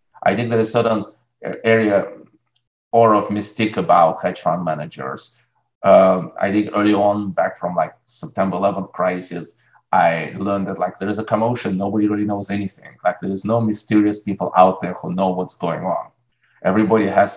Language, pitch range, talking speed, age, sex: English, 100-115 Hz, 180 wpm, 30-49, male